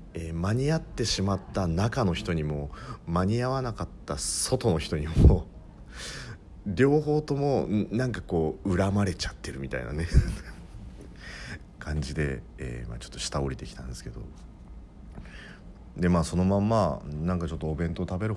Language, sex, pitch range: Japanese, male, 70-95 Hz